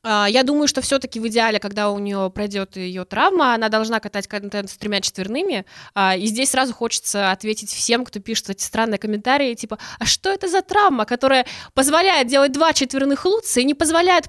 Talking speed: 195 wpm